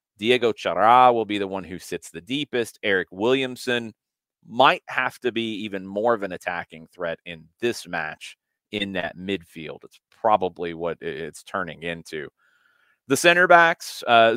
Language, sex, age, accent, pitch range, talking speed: English, male, 30-49, American, 95-130 Hz, 160 wpm